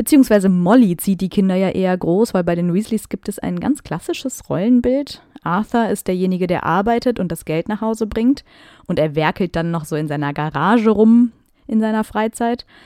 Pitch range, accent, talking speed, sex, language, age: 170-220 Hz, German, 195 wpm, female, German, 30-49